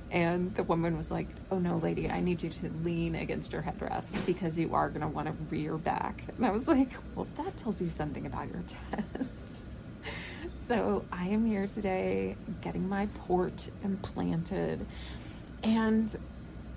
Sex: female